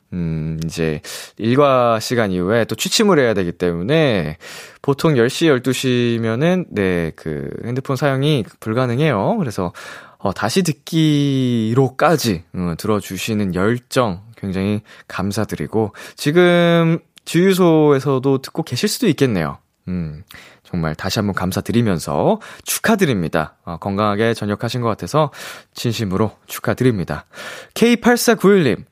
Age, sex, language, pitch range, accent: 20-39, male, Korean, 105-165 Hz, native